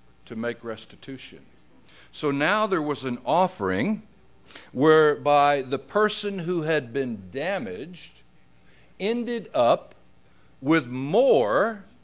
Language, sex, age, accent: English, male, 60-79, American